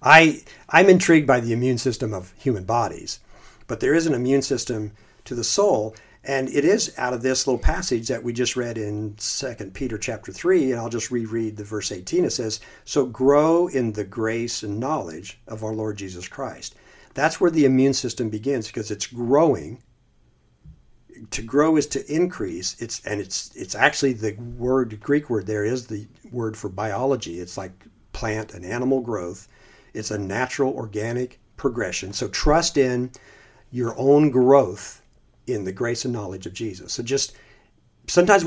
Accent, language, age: American, English, 50-69